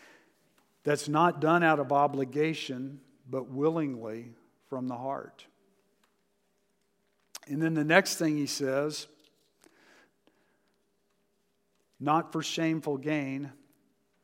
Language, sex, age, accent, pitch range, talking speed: English, male, 50-69, American, 125-150 Hz, 95 wpm